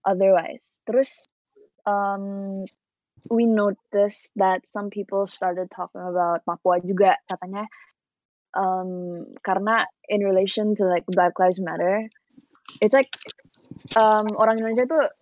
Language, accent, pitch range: Indonesian, native, 185-225 Hz